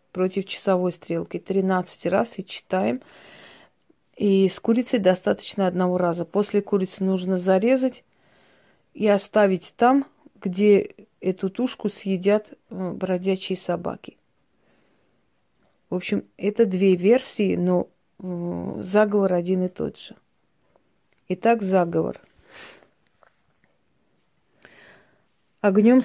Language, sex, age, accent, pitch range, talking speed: Russian, female, 30-49, native, 190-220 Hz, 90 wpm